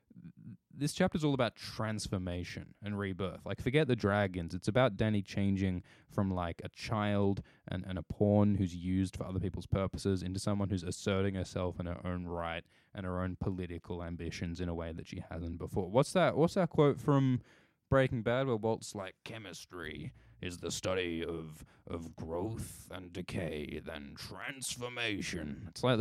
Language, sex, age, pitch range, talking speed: English, male, 10-29, 90-110 Hz, 170 wpm